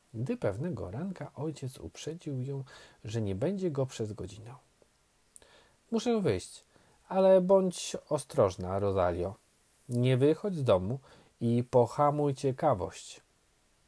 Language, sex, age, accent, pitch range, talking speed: Polish, male, 40-59, native, 110-155 Hz, 110 wpm